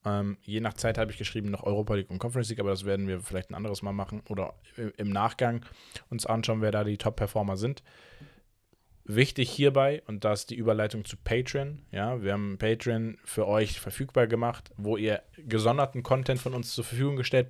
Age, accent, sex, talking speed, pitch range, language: 20-39, German, male, 200 wpm, 105-130 Hz, German